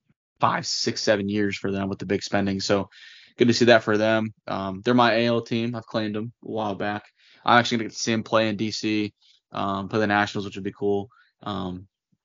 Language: English